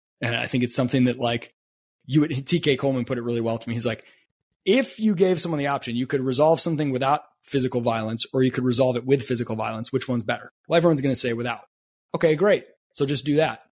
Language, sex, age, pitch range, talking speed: English, male, 20-39, 125-165 Hz, 240 wpm